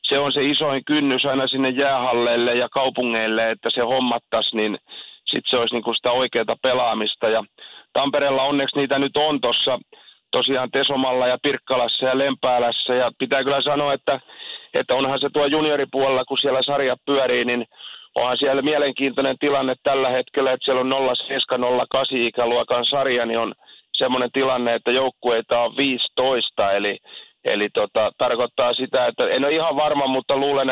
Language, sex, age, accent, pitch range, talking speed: Finnish, male, 40-59, native, 120-135 Hz, 160 wpm